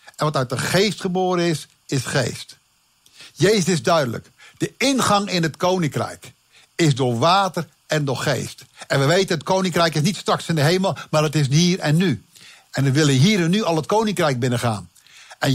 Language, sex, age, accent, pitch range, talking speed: Dutch, male, 60-79, Dutch, 135-190 Hz, 195 wpm